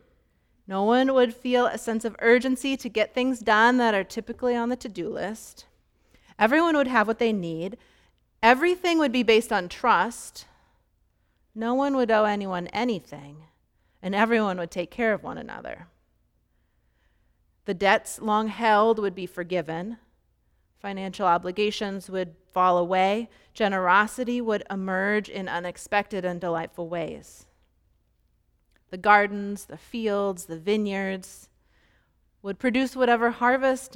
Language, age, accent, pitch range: English, 30-49, American, 195-245 Hz